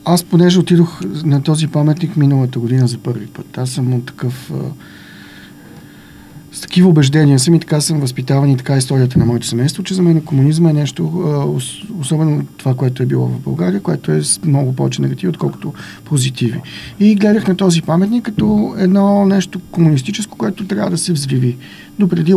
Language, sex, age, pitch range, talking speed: Bulgarian, male, 50-69, 135-175 Hz, 175 wpm